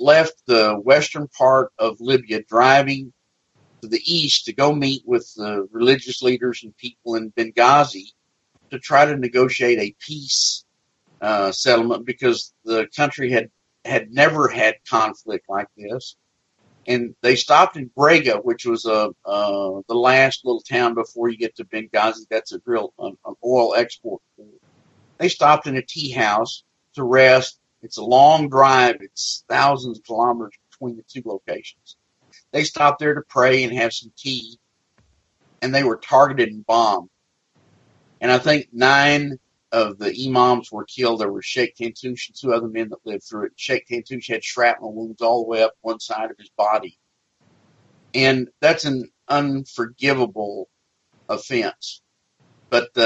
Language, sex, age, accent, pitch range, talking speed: English, male, 50-69, American, 115-140 Hz, 160 wpm